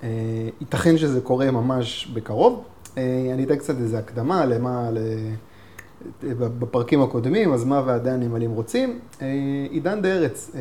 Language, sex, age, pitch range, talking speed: Hebrew, male, 30-49, 115-140 Hz, 120 wpm